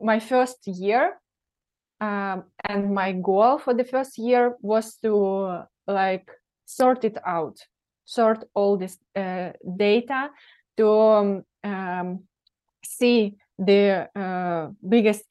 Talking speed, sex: 120 wpm, female